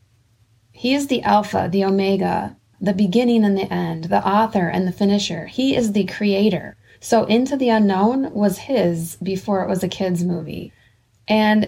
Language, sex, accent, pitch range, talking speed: English, female, American, 185-230 Hz, 170 wpm